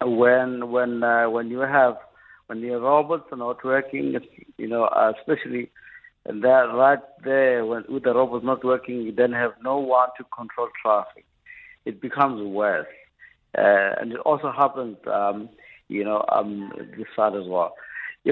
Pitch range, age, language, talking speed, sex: 110-140 Hz, 60-79, English, 160 wpm, male